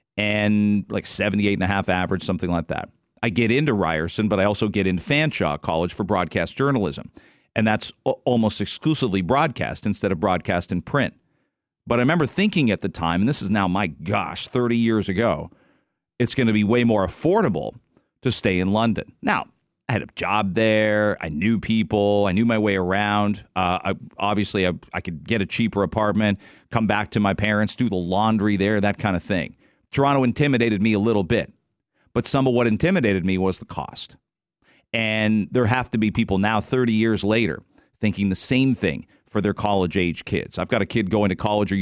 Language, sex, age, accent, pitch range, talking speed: English, male, 40-59, American, 100-115 Hz, 200 wpm